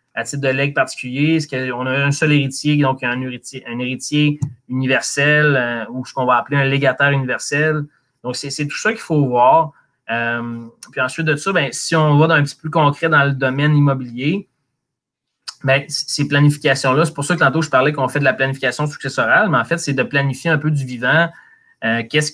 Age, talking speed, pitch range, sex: 20-39, 220 wpm, 130-155 Hz, male